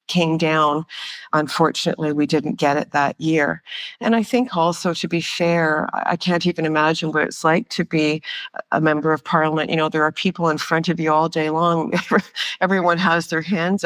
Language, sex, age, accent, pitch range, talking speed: English, female, 50-69, American, 160-180 Hz, 195 wpm